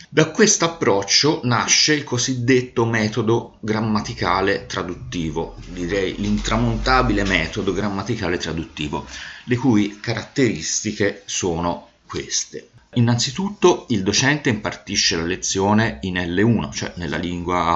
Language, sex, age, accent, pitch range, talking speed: Italian, male, 30-49, native, 85-115 Hz, 100 wpm